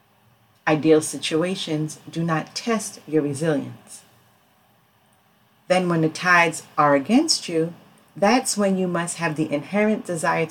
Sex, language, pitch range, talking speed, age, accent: female, English, 150-215 Hz, 125 wpm, 40-59, American